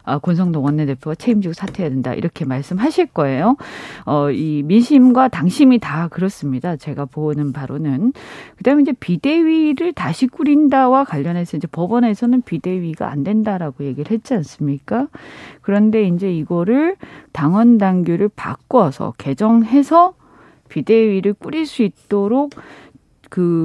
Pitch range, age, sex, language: 165-250 Hz, 40-59, female, Korean